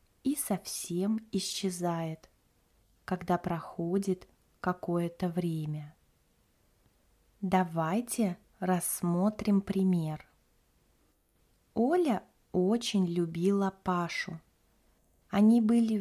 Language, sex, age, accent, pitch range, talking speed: Russian, female, 20-39, native, 170-215 Hz, 60 wpm